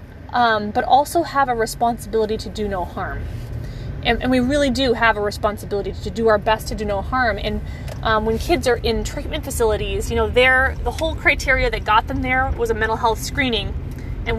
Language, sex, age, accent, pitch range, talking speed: English, female, 20-39, American, 220-275 Hz, 205 wpm